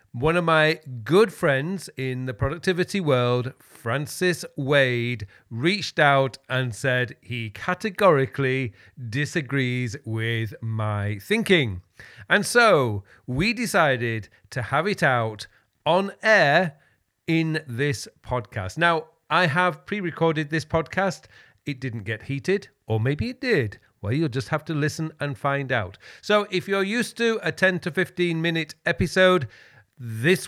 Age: 40-59